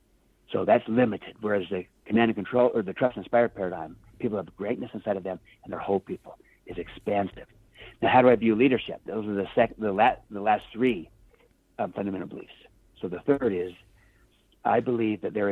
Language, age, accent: English, 60-79, American